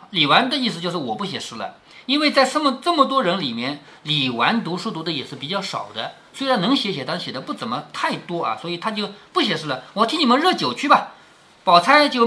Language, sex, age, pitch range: Chinese, male, 50-69, 180-275 Hz